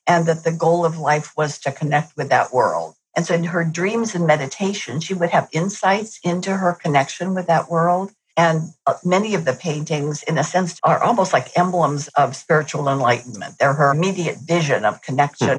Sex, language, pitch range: female, English, 145-170 Hz